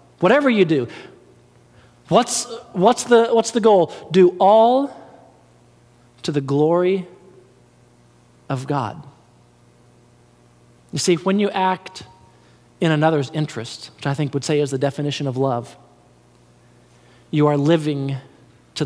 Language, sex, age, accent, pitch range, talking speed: English, male, 40-59, American, 120-180 Hz, 115 wpm